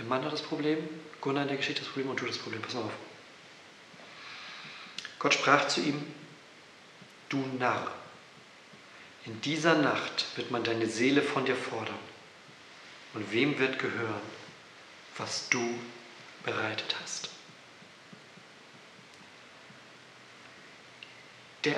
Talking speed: 120 wpm